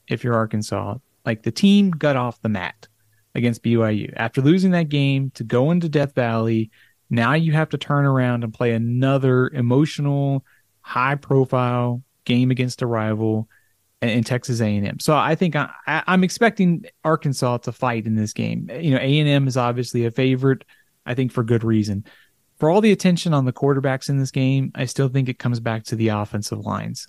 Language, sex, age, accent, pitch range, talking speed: English, male, 30-49, American, 115-140 Hz, 180 wpm